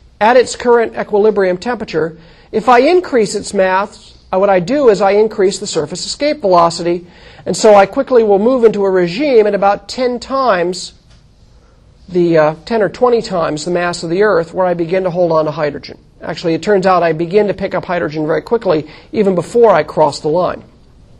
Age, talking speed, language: 40-59, 200 wpm, English